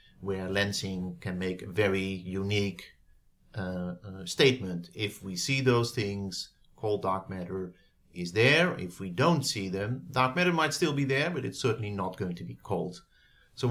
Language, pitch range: English, 95-115 Hz